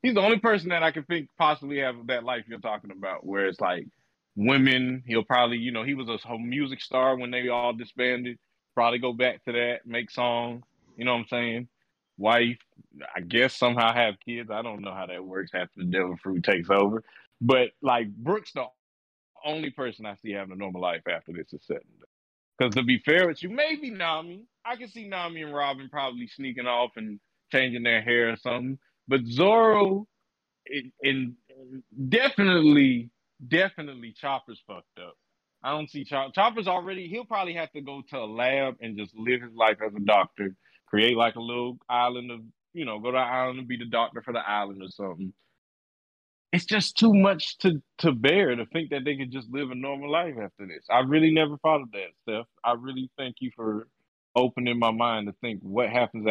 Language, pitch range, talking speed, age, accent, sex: English, 115-145 Hz, 205 wpm, 20-39, American, male